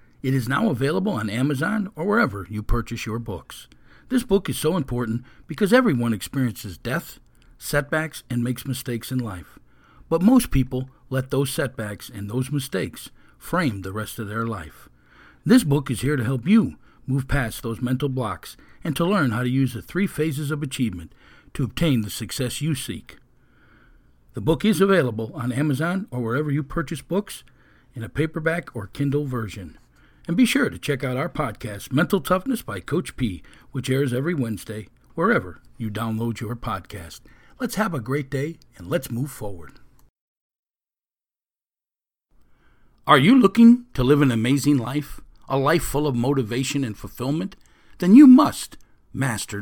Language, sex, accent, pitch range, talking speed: English, male, American, 115-155 Hz, 165 wpm